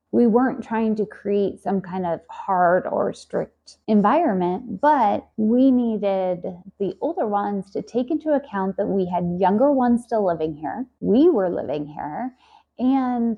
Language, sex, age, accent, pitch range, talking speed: English, female, 20-39, American, 195-250 Hz, 155 wpm